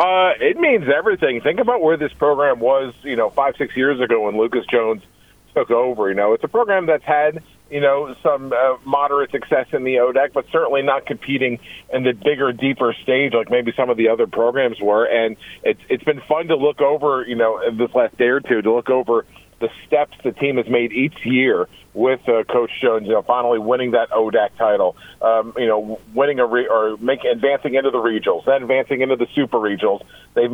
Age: 40-59